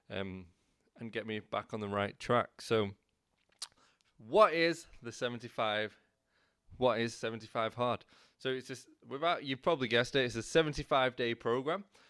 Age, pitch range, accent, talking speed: 20-39, 105-140 Hz, British, 155 wpm